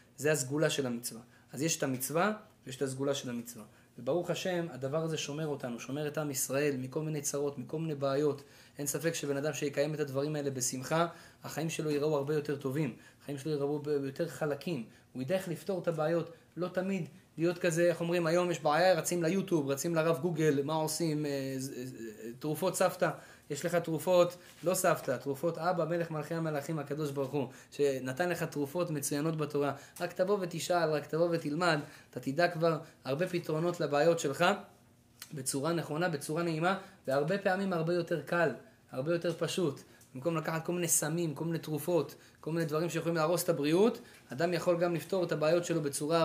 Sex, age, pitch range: male, 20-39, 140-170 Hz